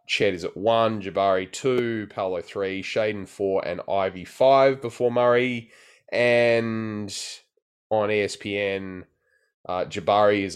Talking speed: 120 wpm